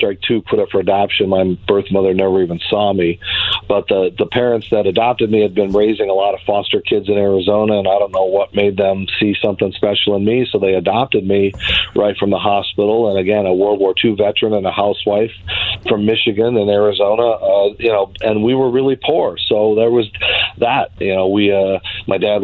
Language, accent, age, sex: English, American, 40-59, male